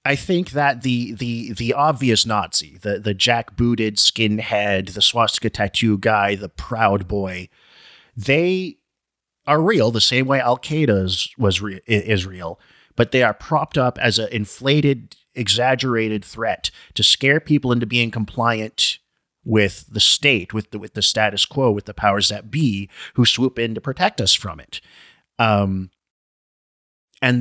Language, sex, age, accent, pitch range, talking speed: English, male, 30-49, American, 100-130 Hz, 160 wpm